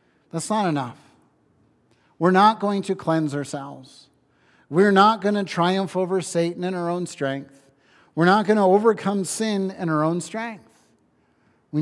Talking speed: 155 wpm